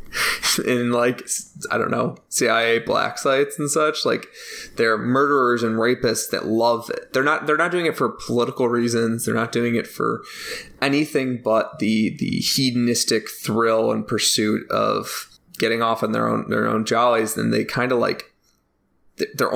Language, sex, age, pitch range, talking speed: English, male, 20-39, 115-145 Hz, 170 wpm